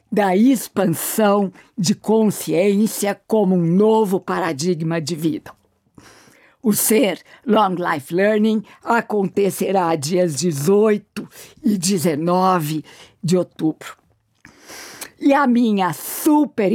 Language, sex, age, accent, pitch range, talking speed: Portuguese, female, 50-69, Brazilian, 185-230 Hz, 95 wpm